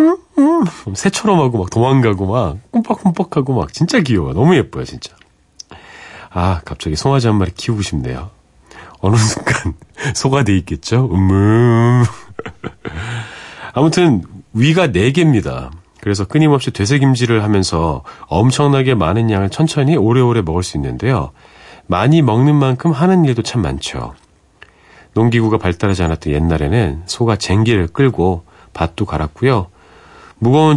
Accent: native